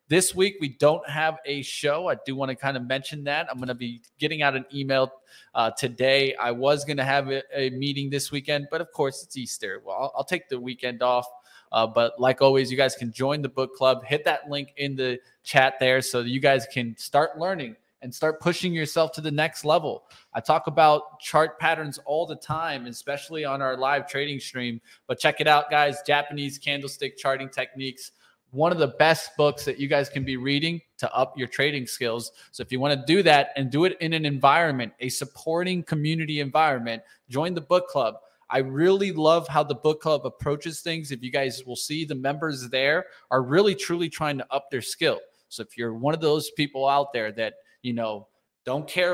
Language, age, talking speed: English, 20-39, 220 wpm